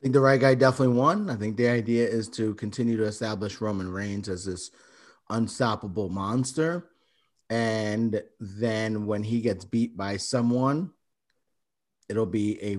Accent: American